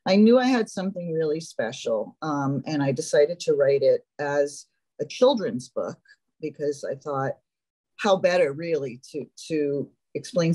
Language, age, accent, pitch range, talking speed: English, 40-59, American, 145-210 Hz, 155 wpm